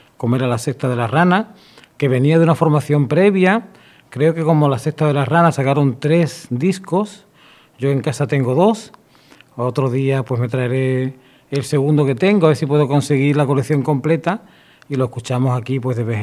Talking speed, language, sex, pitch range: 195 wpm, Spanish, male, 135-165 Hz